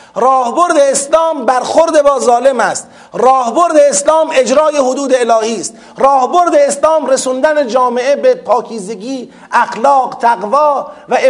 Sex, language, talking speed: male, Persian, 110 wpm